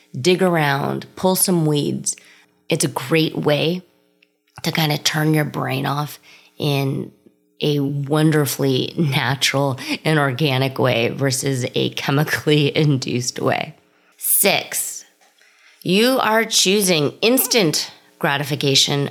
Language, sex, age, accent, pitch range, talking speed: English, female, 30-49, American, 130-160 Hz, 105 wpm